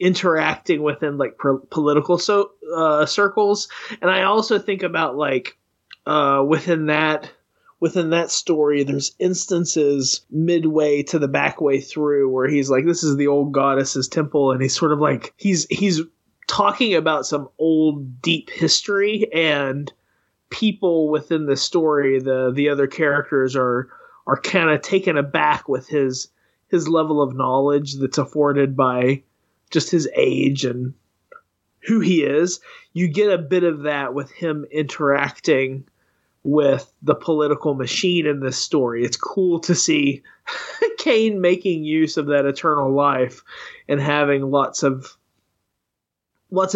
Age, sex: 20-39, male